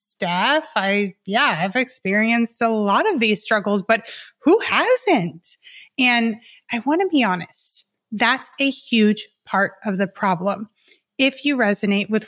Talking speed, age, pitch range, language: 140 wpm, 30-49, 200-235 Hz, English